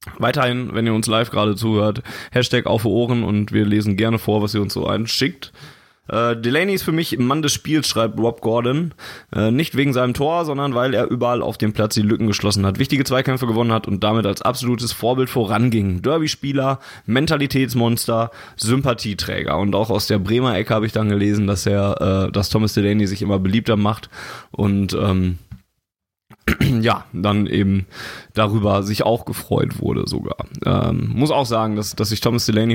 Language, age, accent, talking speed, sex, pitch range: German, 20-39, German, 185 wpm, male, 105-125 Hz